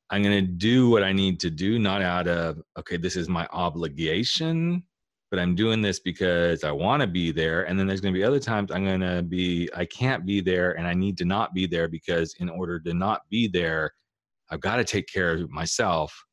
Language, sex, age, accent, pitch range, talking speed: English, male, 30-49, American, 80-100 Hz, 215 wpm